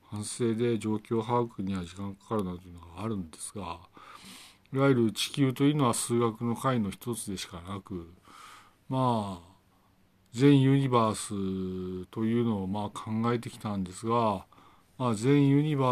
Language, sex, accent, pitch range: Japanese, male, native, 95-120 Hz